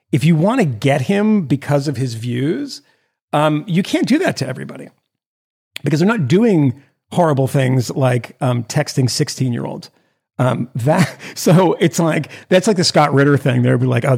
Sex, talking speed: male, 185 wpm